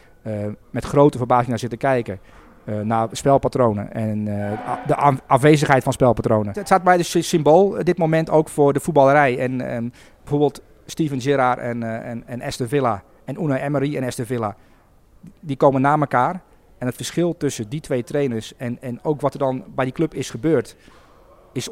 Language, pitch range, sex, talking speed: Dutch, 120-150 Hz, male, 195 wpm